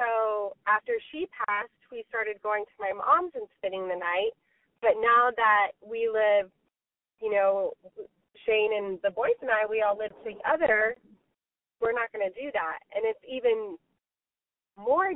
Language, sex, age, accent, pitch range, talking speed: English, female, 20-39, American, 210-290 Hz, 160 wpm